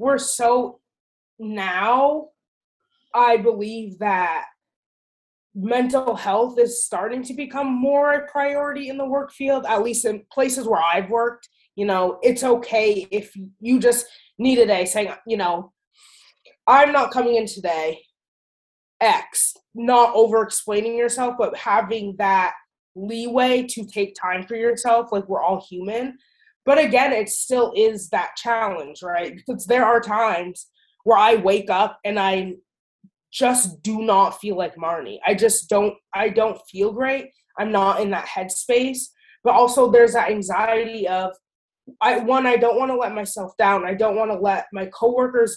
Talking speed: 155 wpm